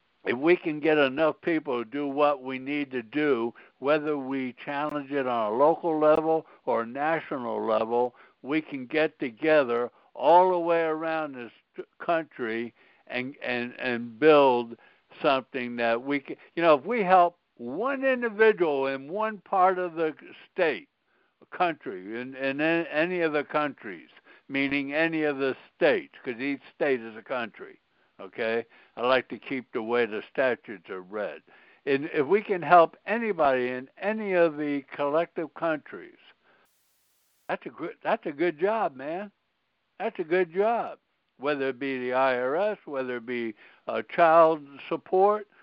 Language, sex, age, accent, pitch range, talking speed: English, male, 60-79, American, 135-185 Hz, 155 wpm